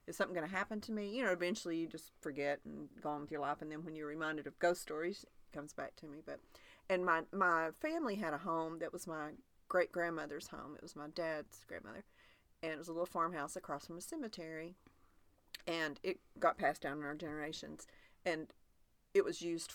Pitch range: 150-180 Hz